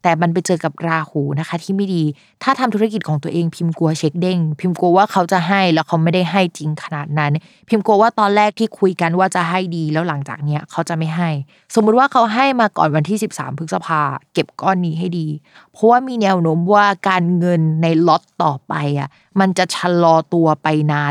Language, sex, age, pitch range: Thai, female, 20-39, 170-215 Hz